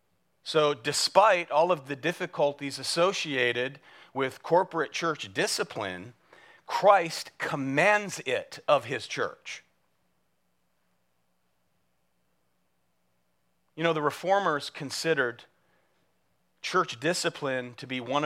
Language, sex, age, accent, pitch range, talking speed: English, male, 40-59, American, 95-155 Hz, 90 wpm